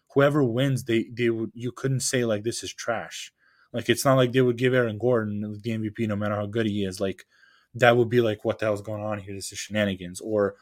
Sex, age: male, 20-39